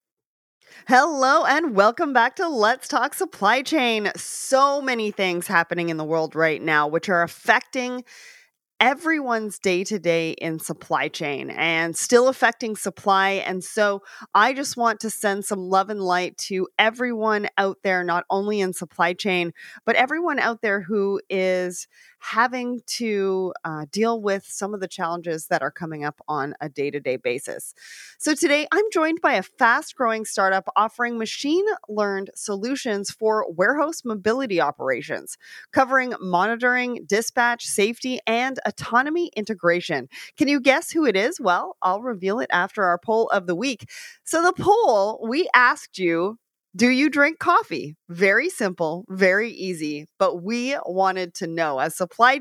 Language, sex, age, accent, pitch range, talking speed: English, female, 30-49, American, 180-250 Hz, 150 wpm